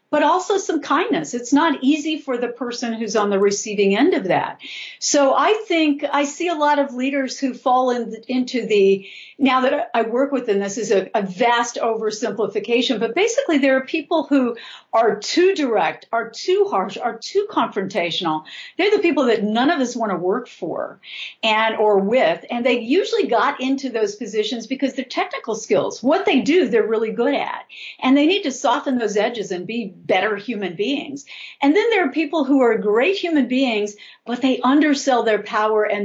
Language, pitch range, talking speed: English, 210-285 Hz, 195 wpm